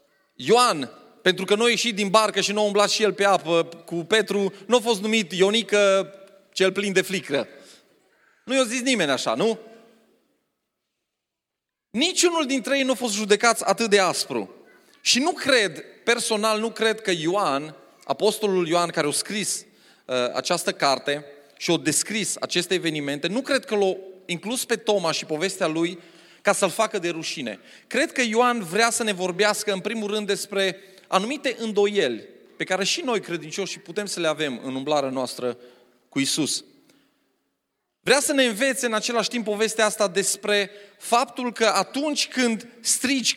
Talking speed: 165 wpm